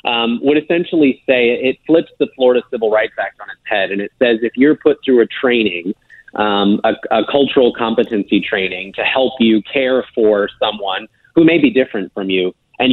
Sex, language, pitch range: male, English, 110-130 Hz